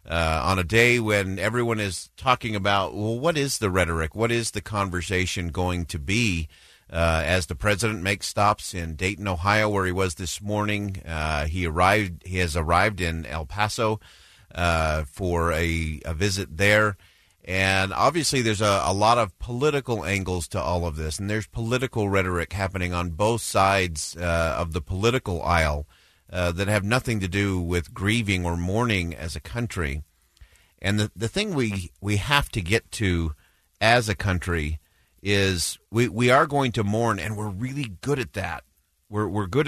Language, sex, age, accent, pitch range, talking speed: English, male, 40-59, American, 85-110 Hz, 180 wpm